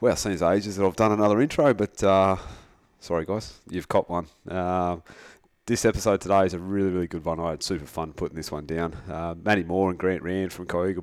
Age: 20-39